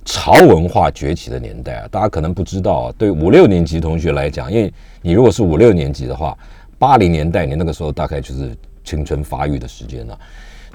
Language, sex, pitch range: Chinese, male, 70-95 Hz